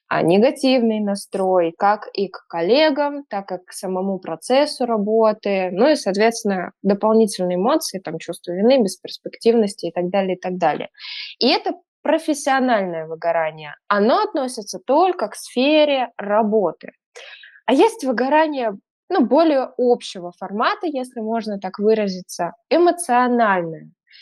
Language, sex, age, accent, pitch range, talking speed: Russian, female, 20-39, native, 195-265 Hz, 125 wpm